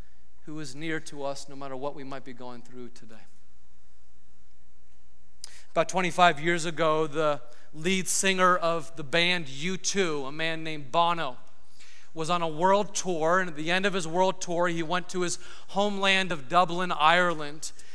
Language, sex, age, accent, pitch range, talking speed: English, male, 30-49, American, 165-210 Hz, 165 wpm